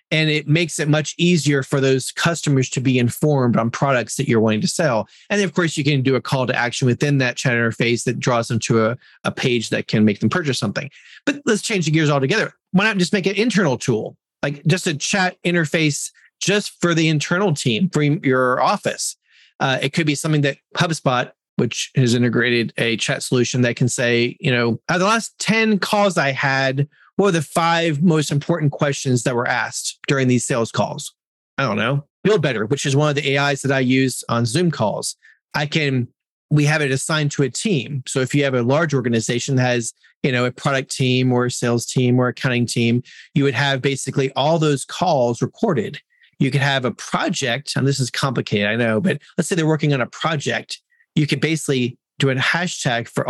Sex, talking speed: male, 220 wpm